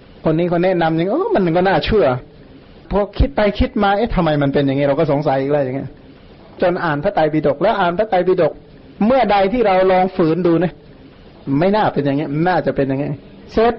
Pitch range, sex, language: 150-195 Hz, male, Thai